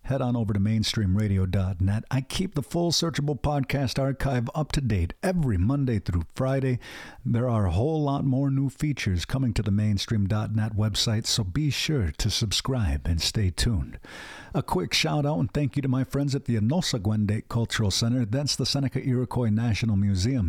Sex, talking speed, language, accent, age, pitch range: male, 180 wpm, English, American, 50-69, 105-140 Hz